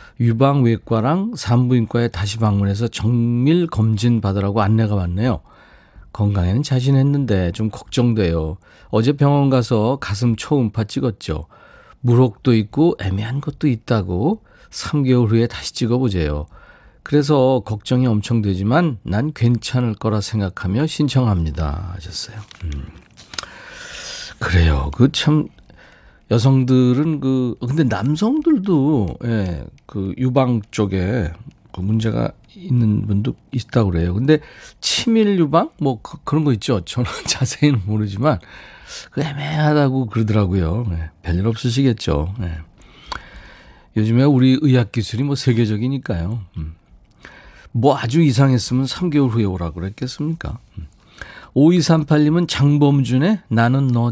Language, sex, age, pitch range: Korean, male, 40-59, 105-140 Hz